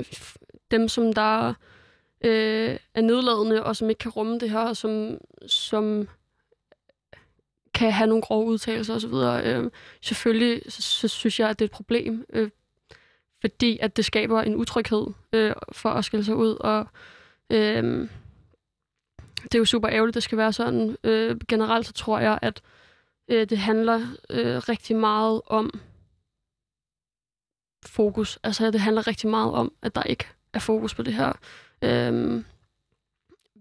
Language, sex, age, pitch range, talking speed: Danish, female, 20-39, 215-230 Hz, 160 wpm